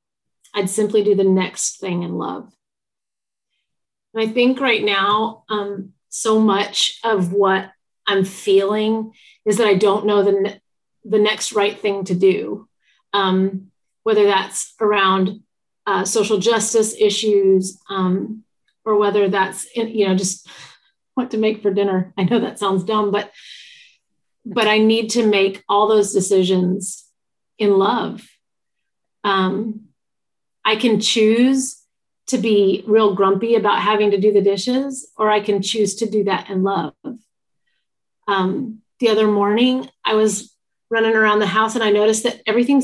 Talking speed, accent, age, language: 150 wpm, American, 30-49, English